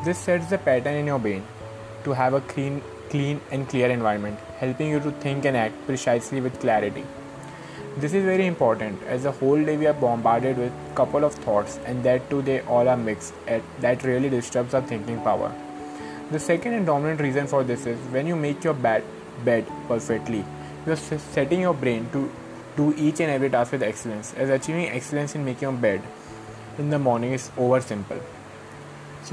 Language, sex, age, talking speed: English, male, 20-39, 190 wpm